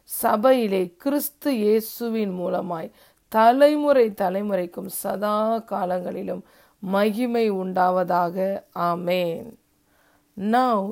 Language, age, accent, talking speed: Tamil, 50-69, native, 65 wpm